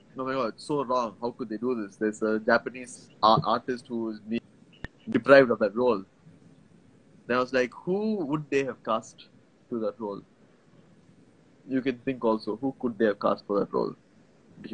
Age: 20-39